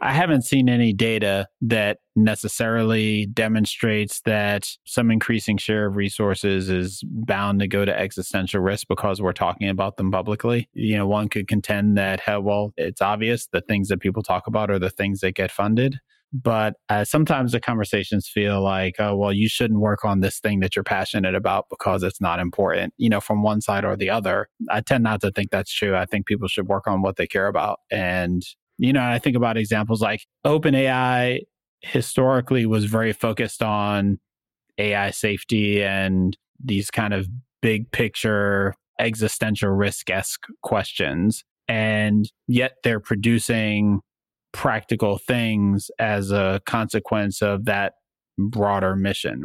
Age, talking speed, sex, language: 30-49, 165 wpm, male, English